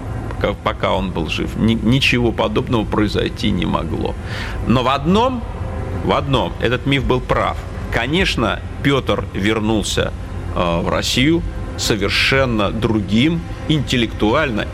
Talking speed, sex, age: 105 wpm, male, 40-59